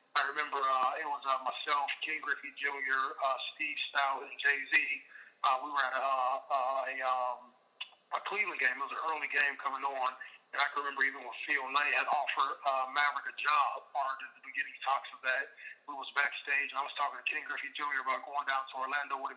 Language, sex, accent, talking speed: English, male, American, 230 wpm